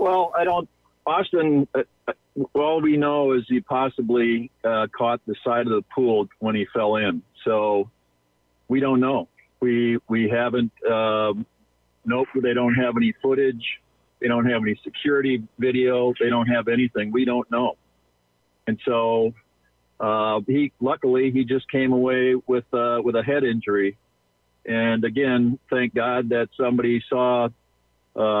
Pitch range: 105-130 Hz